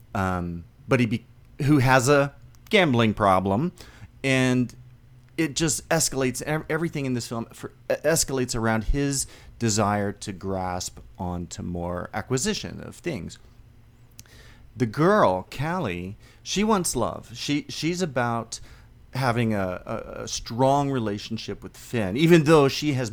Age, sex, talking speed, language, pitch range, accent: 40-59, male, 120 wpm, English, 100-130 Hz, American